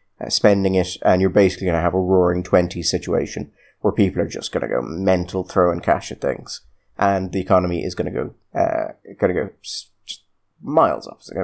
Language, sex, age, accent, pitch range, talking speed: English, male, 30-49, British, 95-120 Hz, 225 wpm